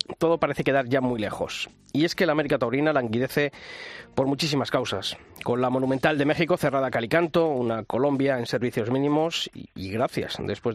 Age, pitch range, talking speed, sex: 30-49, 125-155 Hz, 185 wpm, male